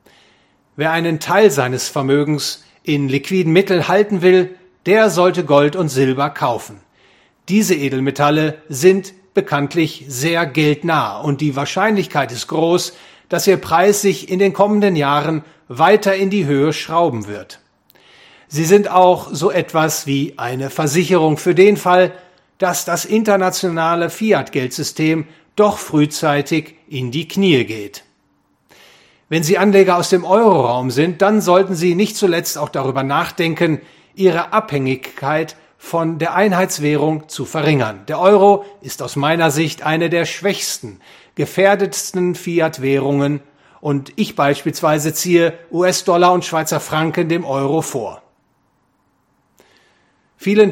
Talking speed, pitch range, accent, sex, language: 125 wpm, 145-185 Hz, German, male, English